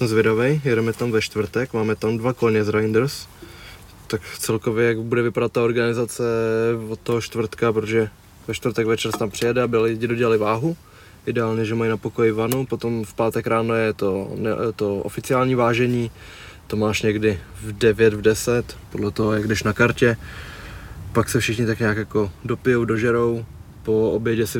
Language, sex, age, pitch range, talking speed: Czech, male, 20-39, 105-120 Hz, 175 wpm